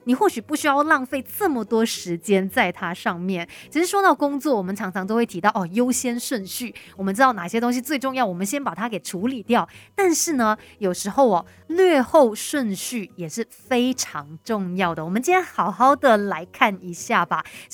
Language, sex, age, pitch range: Chinese, female, 30-49, 195-275 Hz